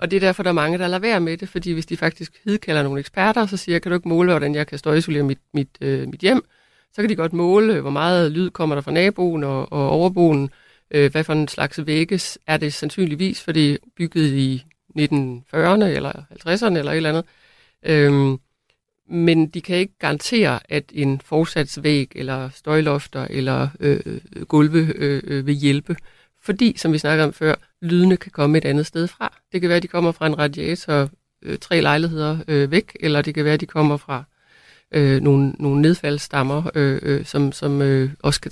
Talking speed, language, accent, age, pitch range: 210 wpm, Danish, native, 60-79, 145-175 Hz